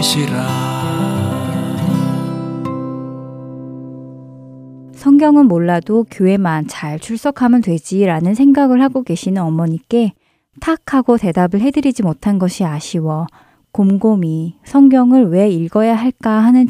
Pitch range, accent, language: 170-235 Hz, native, Korean